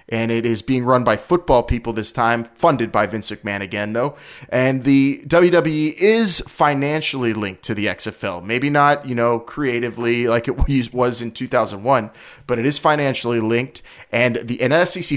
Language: English